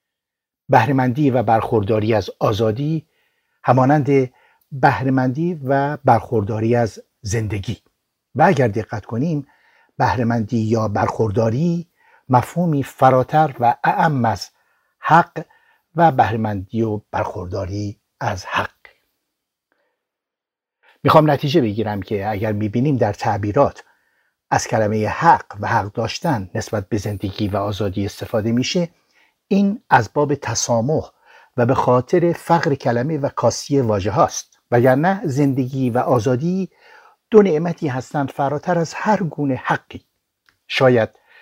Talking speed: 110 wpm